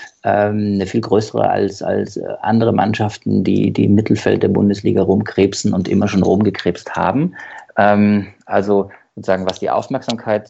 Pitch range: 95-115 Hz